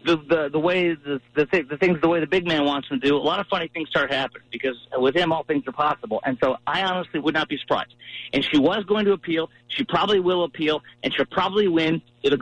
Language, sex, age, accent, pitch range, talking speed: English, male, 40-59, American, 135-175 Hz, 250 wpm